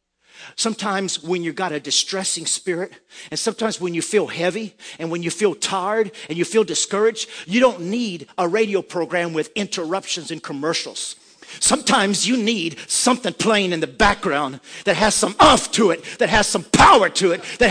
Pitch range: 230-360 Hz